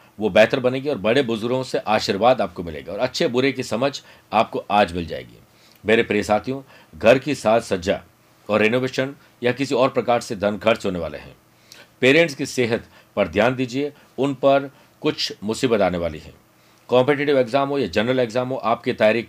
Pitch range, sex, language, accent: 105-135 Hz, male, Hindi, native